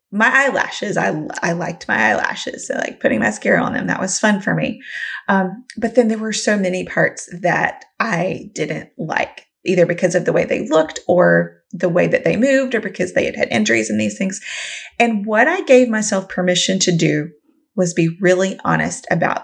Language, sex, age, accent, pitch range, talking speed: English, female, 30-49, American, 180-255 Hz, 200 wpm